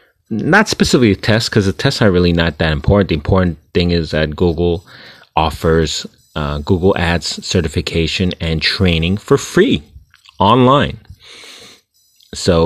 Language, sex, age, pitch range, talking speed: English, male, 30-49, 80-105 Hz, 135 wpm